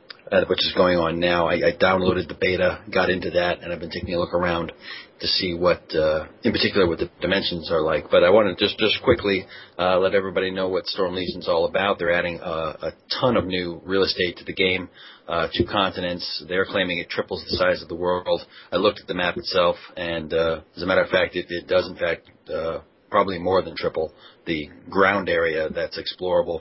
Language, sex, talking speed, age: English, male, 225 wpm, 40-59